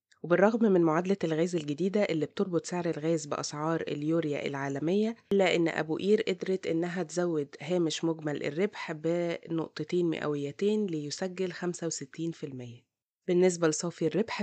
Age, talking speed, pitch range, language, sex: 20-39, 120 wpm, 155-190 Hz, Arabic, female